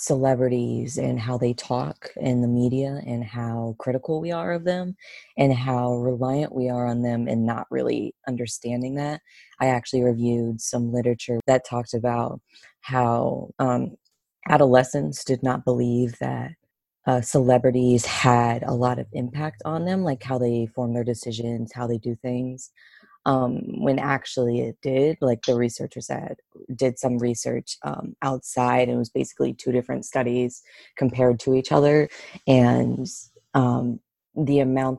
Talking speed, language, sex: 155 wpm, English, female